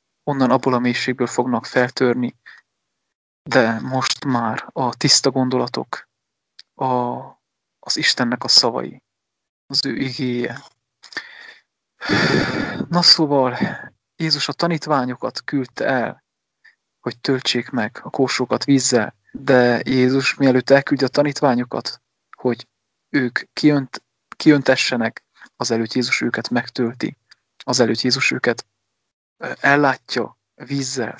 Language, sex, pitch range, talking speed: English, male, 120-145 Hz, 105 wpm